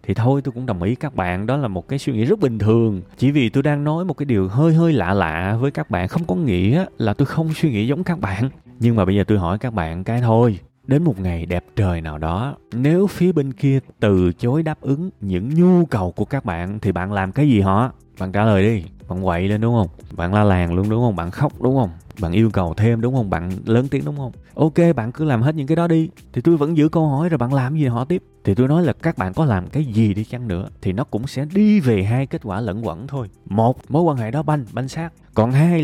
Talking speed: 280 wpm